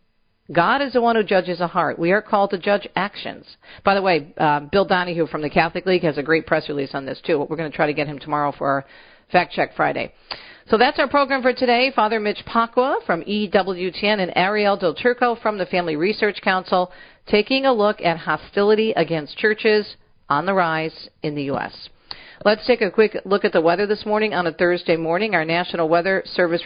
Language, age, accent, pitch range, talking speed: English, 50-69, American, 160-210 Hz, 215 wpm